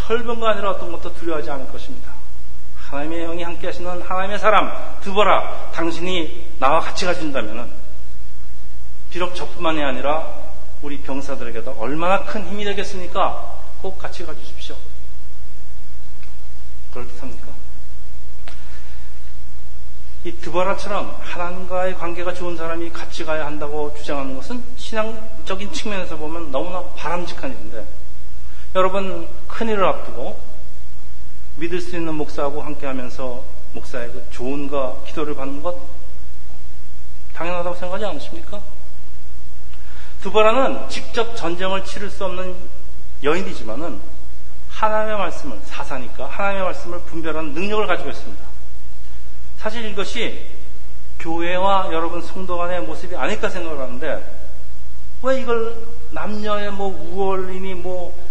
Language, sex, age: Korean, male, 40-59